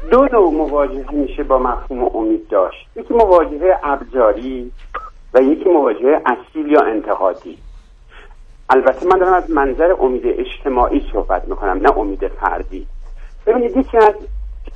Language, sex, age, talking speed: Persian, male, 60-79, 130 wpm